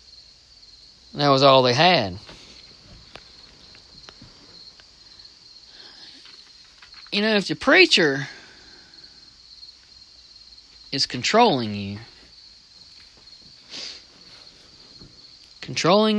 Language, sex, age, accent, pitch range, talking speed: English, male, 40-59, American, 125-165 Hz, 50 wpm